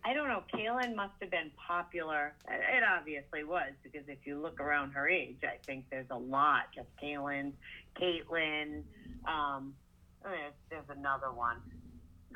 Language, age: English, 30-49